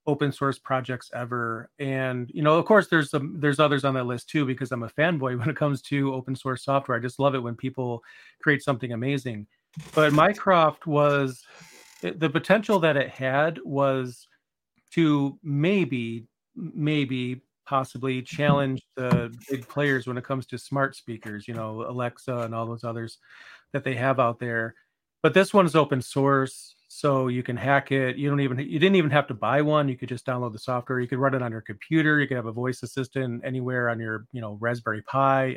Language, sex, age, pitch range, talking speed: English, male, 40-59, 125-145 Hz, 200 wpm